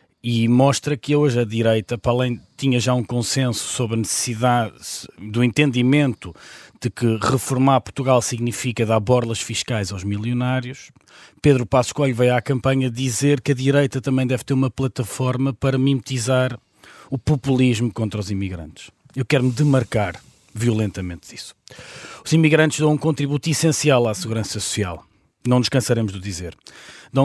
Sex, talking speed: male, 155 wpm